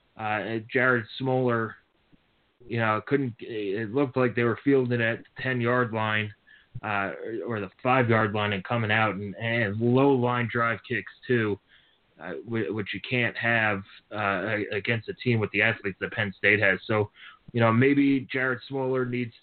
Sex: male